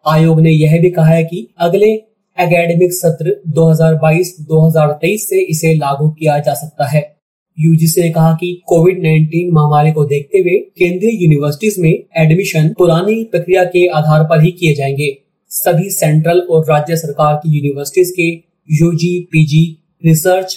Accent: native